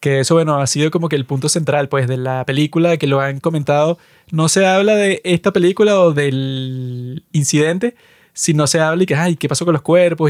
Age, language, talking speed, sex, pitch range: 20-39, Spanish, 220 wpm, male, 145-175 Hz